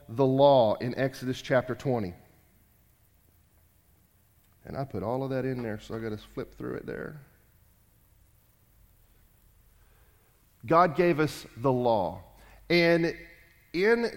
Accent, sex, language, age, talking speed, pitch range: American, male, English, 40-59, 125 wpm, 125-180 Hz